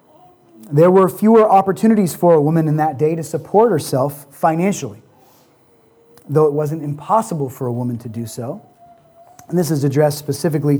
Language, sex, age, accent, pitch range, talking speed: English, male, 30-49, American, 140-165 Hz, 160 wpm